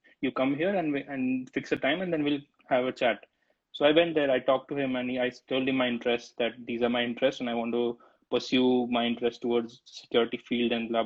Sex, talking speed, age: male, 250 wpm, 20-39